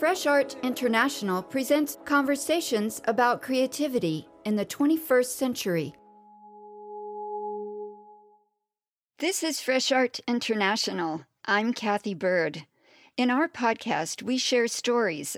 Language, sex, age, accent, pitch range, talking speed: English, female, 50-69, American, 175-255 Hz, 100 wpm